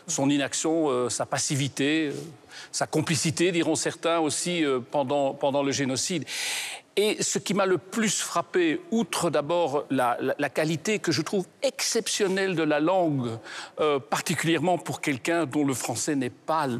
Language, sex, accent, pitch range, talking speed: French, male, French, 145-190 Hz, 160 wpm